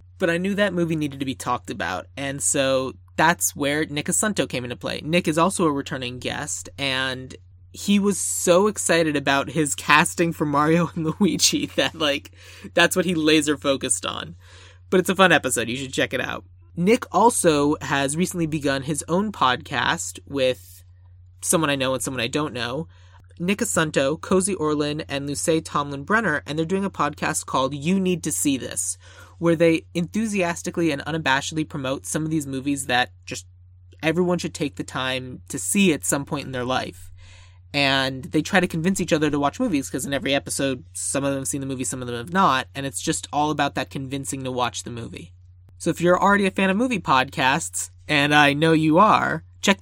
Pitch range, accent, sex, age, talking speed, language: 125-170 Hz, American, male, 30-49, 200 wpm, English